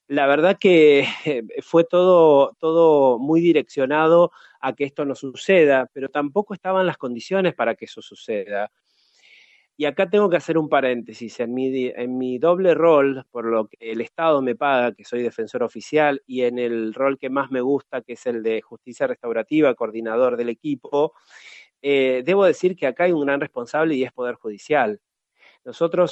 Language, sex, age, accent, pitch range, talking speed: Spanish, male, 30-49, Argentinian, 125-165 Hz, 175 wpm